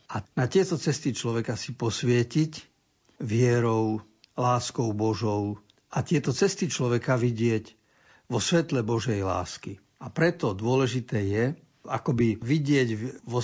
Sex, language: male, Slovak